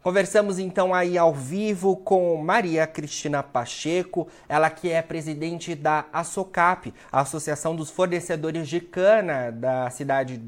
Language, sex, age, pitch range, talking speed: Portuguese, male, 30-49, 135-165 Hz, 130 wpm